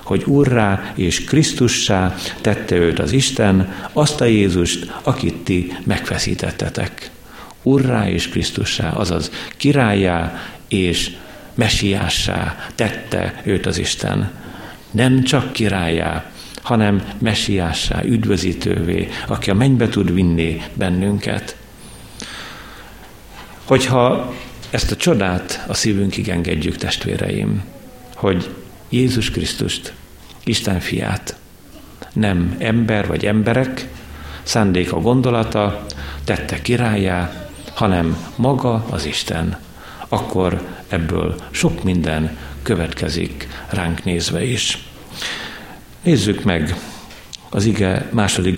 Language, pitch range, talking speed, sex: Hungarian, 85-115 Hz, 95 wpm, male